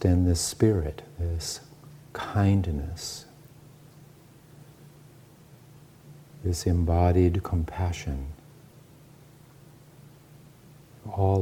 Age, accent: 50-69, American